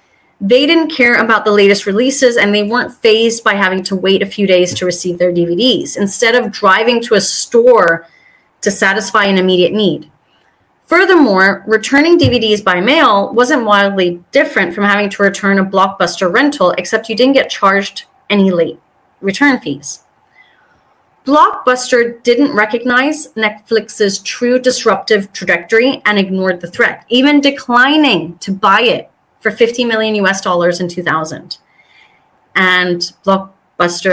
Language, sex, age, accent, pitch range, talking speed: English, female, 30-49, American, 180-240 Hz, 145 wpm